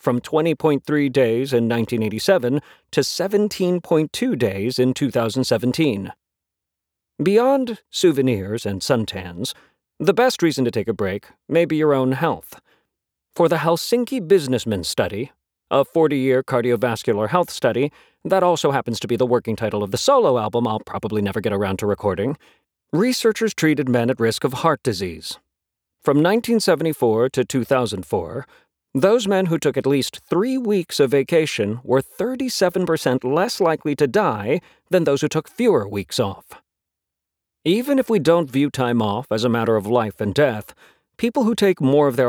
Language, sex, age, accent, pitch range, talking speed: English, male, 40-59, American, 115-175 Hz, 155 wpm